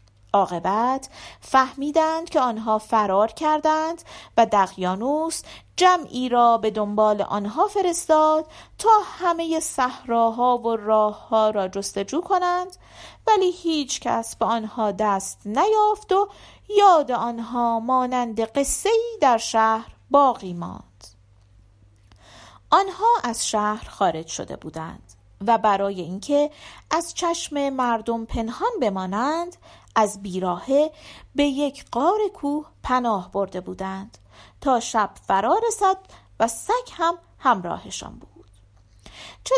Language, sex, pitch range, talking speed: Persian, female, 205-320 Hz, 110 wpm